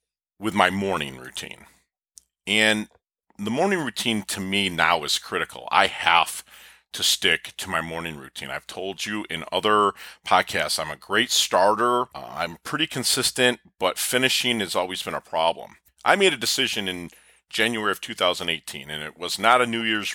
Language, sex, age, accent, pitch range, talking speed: English, male, 40-59, American, 85-115 Hz, 170 wpm